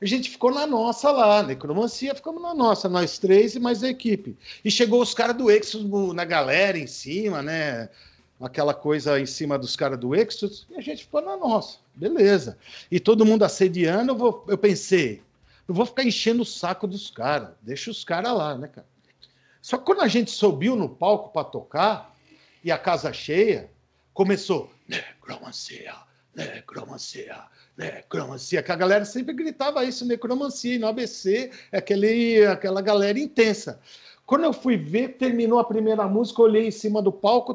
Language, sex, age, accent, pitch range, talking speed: Portuguese, male, 50-69, Brazilian, 195-250 Hz, 175 wpm